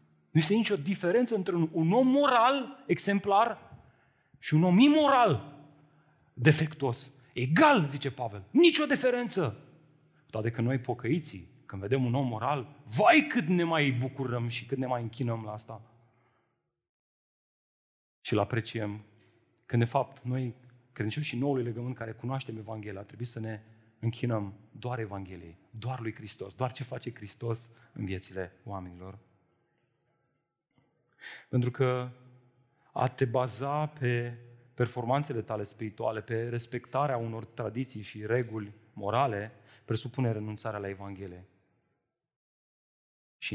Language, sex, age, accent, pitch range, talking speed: Romanian, male, 30-49, native, 110-140 Hz, 125 wpm